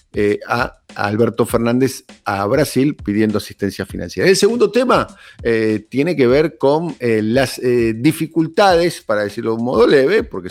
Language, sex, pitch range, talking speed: Spanish, male, 105-130 Hz, 160 wpm